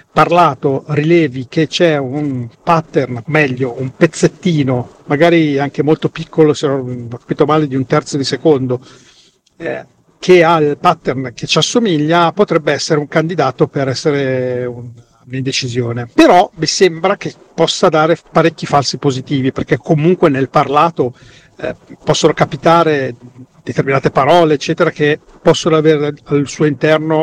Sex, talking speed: male, 140 wpm